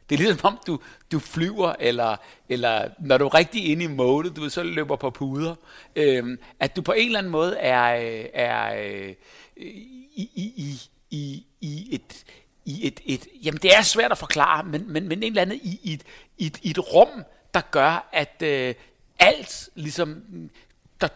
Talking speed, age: 150 wpm, 60-79